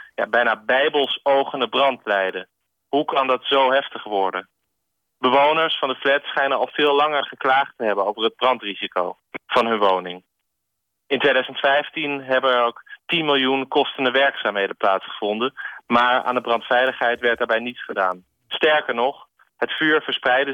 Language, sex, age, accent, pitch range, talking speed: Dutch, male, 30-49, Dutch, 110-135 Hz, 145 wpm